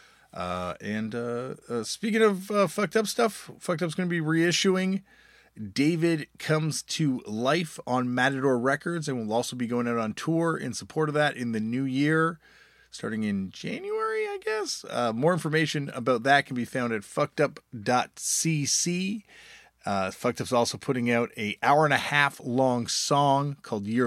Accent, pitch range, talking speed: American, 110-160 Hz, 170 wpm